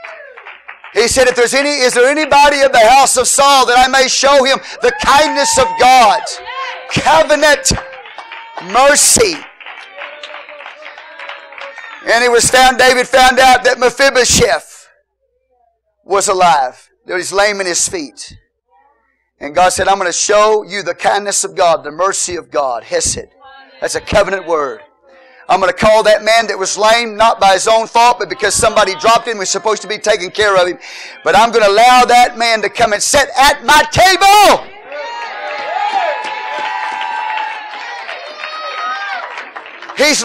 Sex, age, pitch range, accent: male, 40-59, 210-295 Hz, American